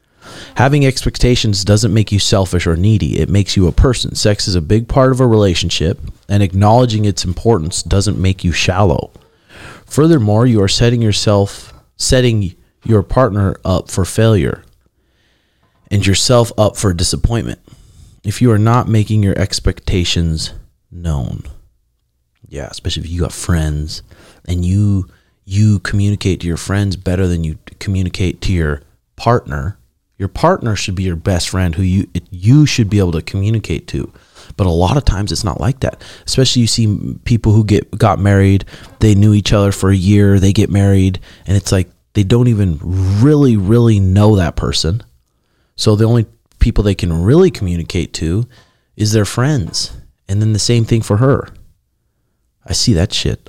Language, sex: English, male